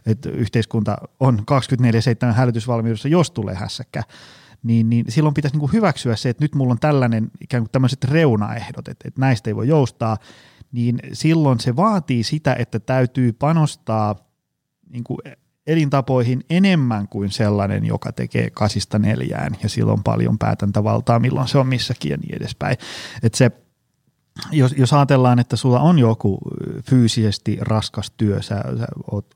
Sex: male